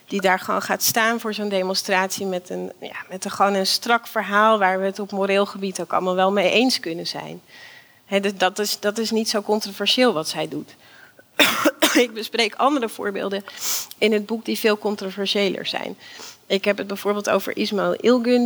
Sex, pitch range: female, 185-215 Hz